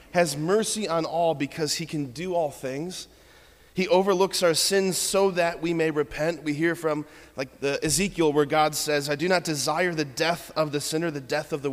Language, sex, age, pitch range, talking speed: English, male, 20-39, 145-180 Hz, 210 wpm